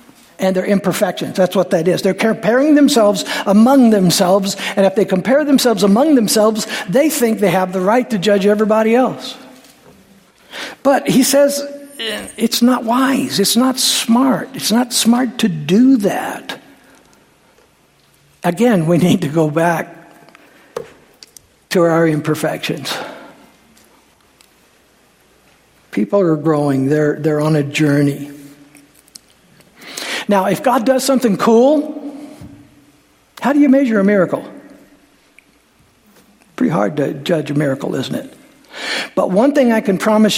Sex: male